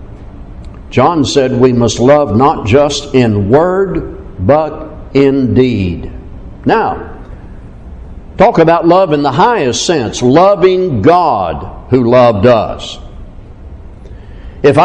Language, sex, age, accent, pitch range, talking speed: English, male, 60-79, American, 125-175 Hz, 105 wpm